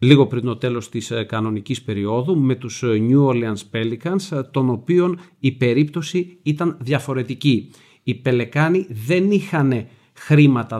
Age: 40-59